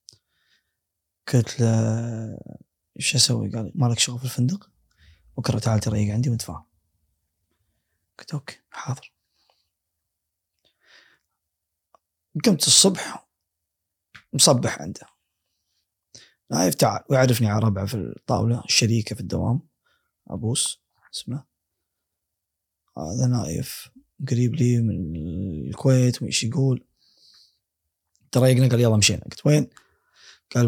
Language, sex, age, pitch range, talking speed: Arabic, male, 20-39, 95-125 Hz, 95 wpm